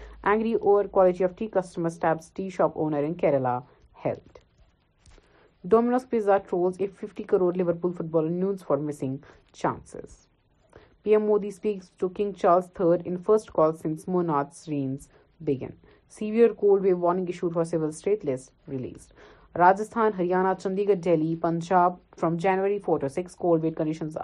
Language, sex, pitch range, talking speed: Urdu, female, 155-200 Hz, 150 wpm